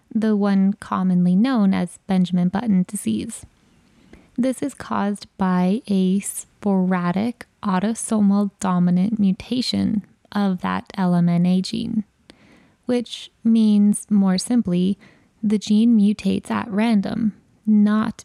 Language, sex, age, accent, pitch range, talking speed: English, female, 20-39, American, 190-220 Hz, 100 wpm